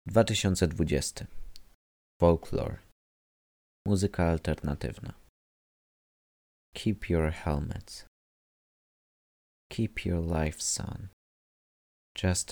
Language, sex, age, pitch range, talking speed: Polish, male, 30-49, 70-95 Hz, 60 wpm